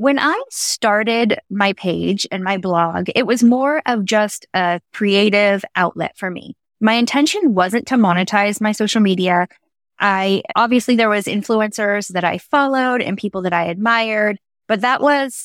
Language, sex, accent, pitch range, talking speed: English, female, American, 195-235 Hz, 165 wpm